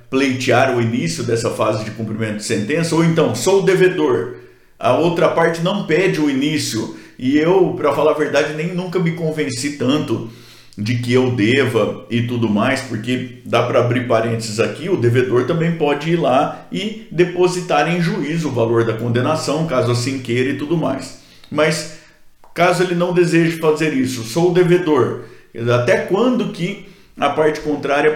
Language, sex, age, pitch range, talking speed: Portuguese, male, 50-69, 125-170 Hz, 175 wpm